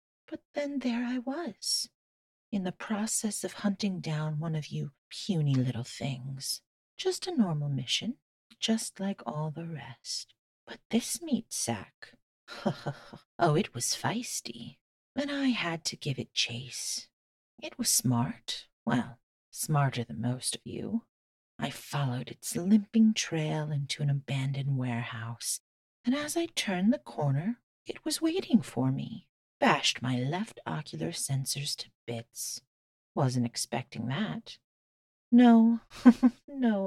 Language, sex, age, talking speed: English, female, 40-59, 135 wpm